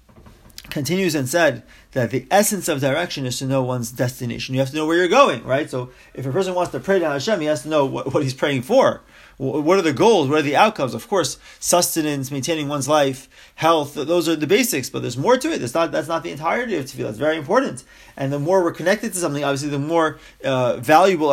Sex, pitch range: male, 140-215 Hz